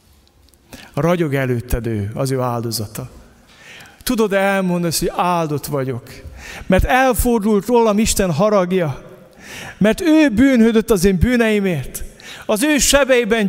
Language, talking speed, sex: Hungarian, 115 wpm, male